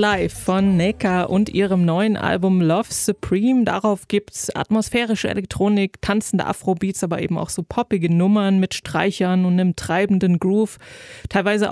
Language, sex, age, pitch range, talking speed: German, female, 20-39, 185-220 Hz, 145 wpm